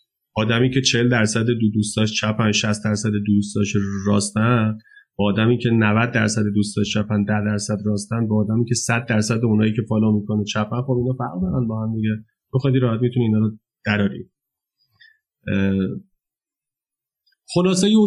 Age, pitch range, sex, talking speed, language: 30-49, 110-140 Hz, male, 145 wpm, Persian